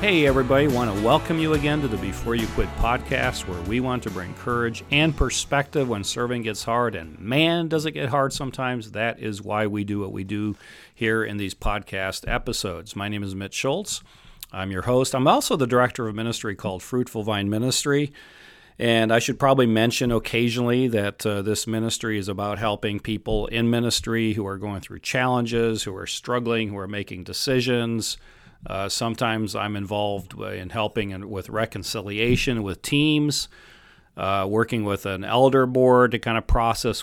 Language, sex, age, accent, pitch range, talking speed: English, male, 40-59, American, 100-125 Hz, 185 wpm